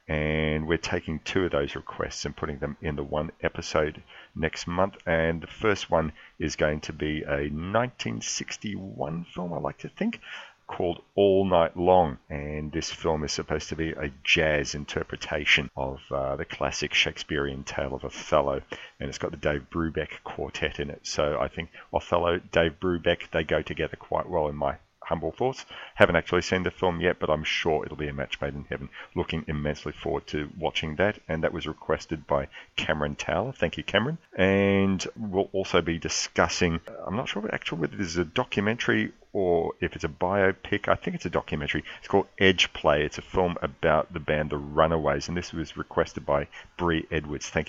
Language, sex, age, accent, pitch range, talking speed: English, male, 40-59, Australian, 75-90 Hz, 195 wpm